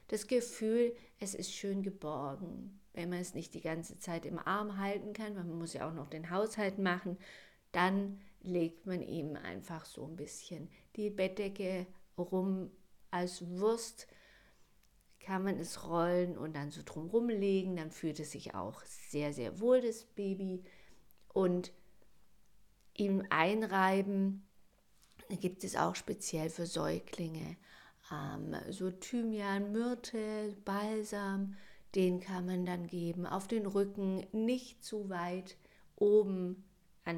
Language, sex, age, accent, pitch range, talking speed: German, female, 50-69, German, 170-200 Hz, 135 wpm